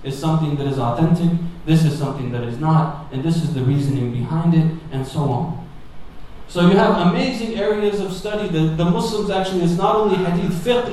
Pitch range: 155-180 Hz